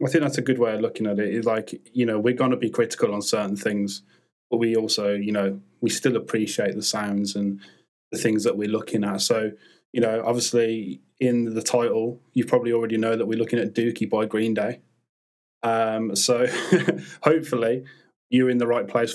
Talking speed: 205 wpm